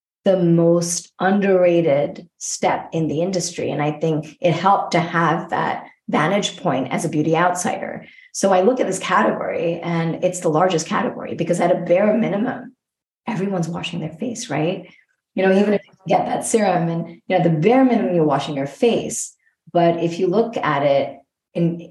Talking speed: 185 wpm